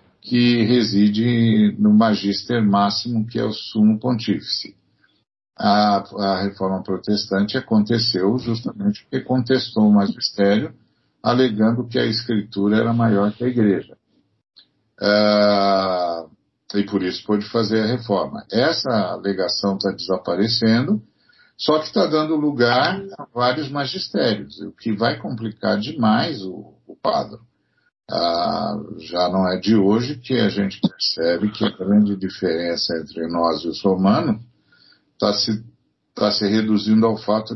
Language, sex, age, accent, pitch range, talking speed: Portuguese, male, 60-79, Brazilian, 100-120 Hz, 130 wpm